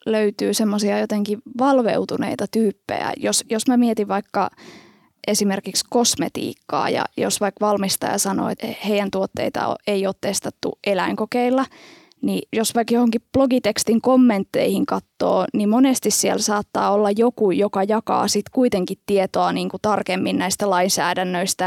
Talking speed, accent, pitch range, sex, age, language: 130 wpm, native, 195-240 Hz, female, 20-39, Finnish